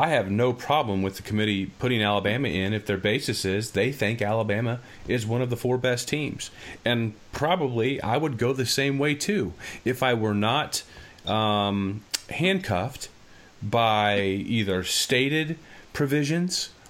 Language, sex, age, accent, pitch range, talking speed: English, male, 30-49, American, 105-135 Hz, 155 wpm